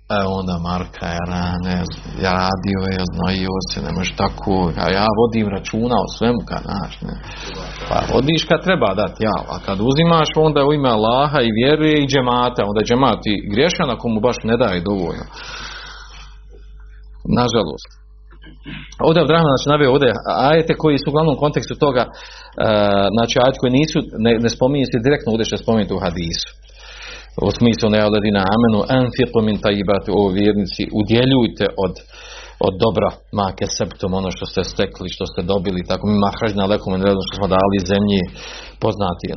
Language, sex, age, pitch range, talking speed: Croatian, male, 40-59, 100-120 Hz, 175 wpm